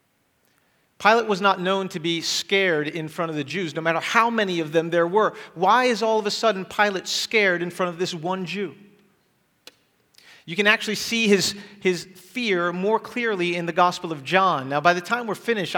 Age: 40-59